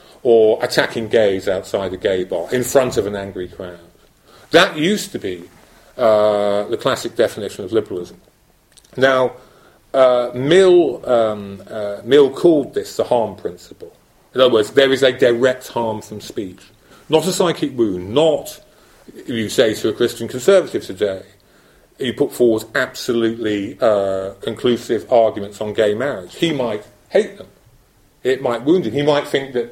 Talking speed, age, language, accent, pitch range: 155 wpm, 40-59, English, British, 115-165 Hz